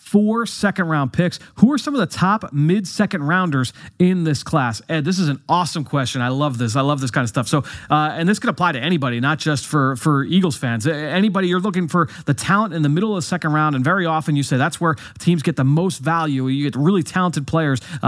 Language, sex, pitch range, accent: English, male, 140-165 Hz, American